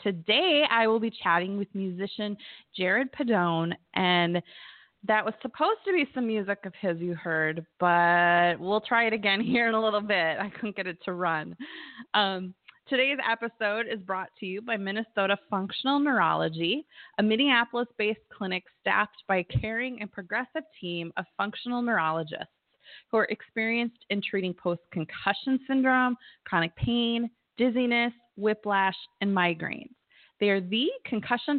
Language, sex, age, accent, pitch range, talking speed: English, female, 20-39, American, 185-235 Hz, 150 wpm